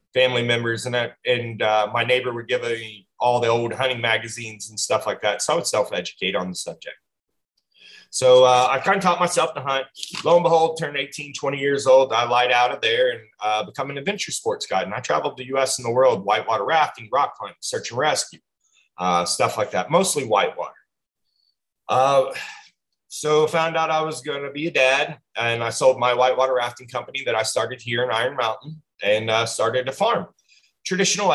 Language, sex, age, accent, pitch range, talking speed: English, male, 30-49, American, 115-145 Hz, 210 wpm